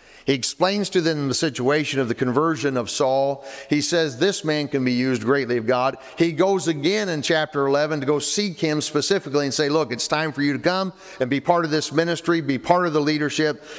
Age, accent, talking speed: 50-69, American, 225 wpm